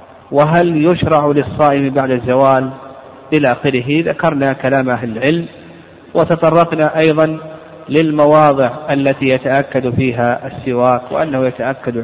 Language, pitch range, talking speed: Arabic, 125-150 Hz, 100 wpm